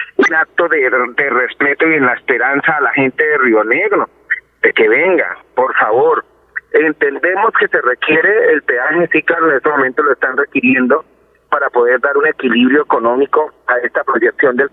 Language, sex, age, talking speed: Spanish, male, 40-59, 180 wpm